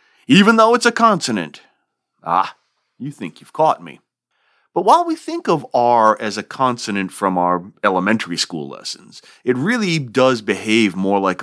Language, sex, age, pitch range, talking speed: English, male, 30-49, 90-130 Hz, 165 wpm